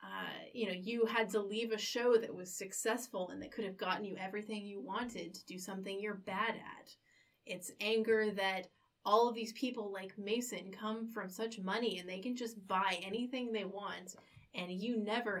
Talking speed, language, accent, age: 200 wpm, English, American, 30-49